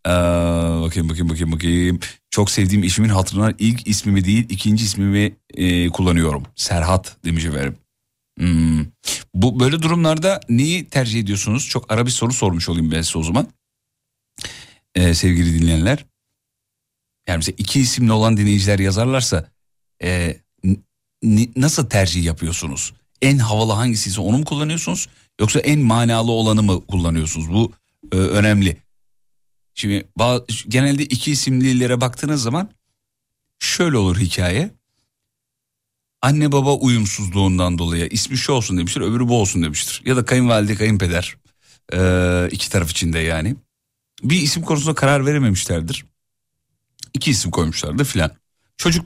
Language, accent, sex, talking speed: Turkish, native, male, 130 wpm